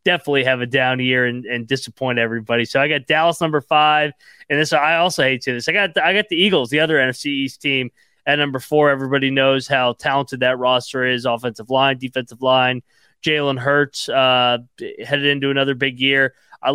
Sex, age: male, 20-39